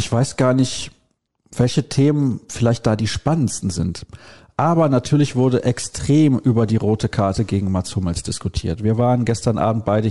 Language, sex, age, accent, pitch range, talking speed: German, male, 40-59, German, 105-130 Hz, 165 wpm